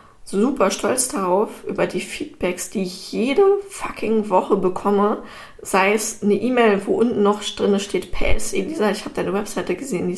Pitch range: 190-225 Hz